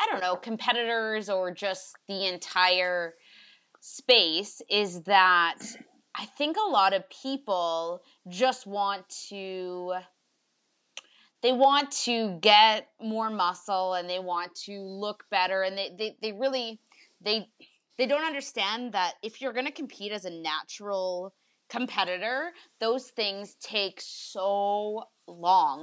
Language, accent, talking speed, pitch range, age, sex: English, American, 130 wpm, 180-225 Hz, 20-39, female